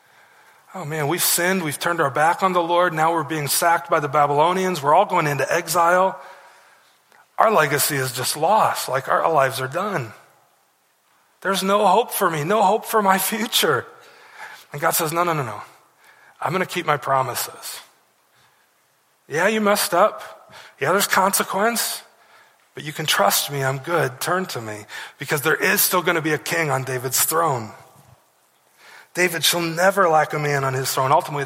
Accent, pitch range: American, 150-185 Hz